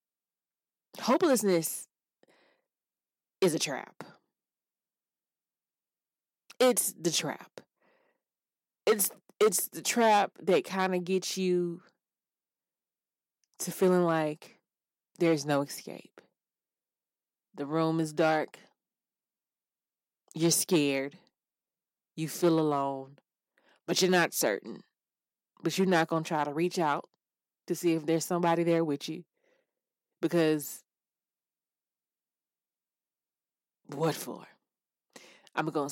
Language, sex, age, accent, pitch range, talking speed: English, female, 20-39, American, 150-185 Hz, 95 wpm